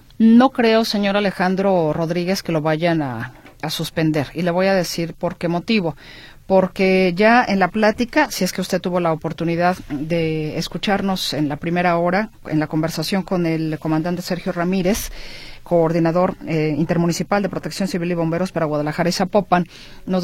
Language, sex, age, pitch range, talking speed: Spanish, female, 40-59, 155-195 Hz, 170 wpm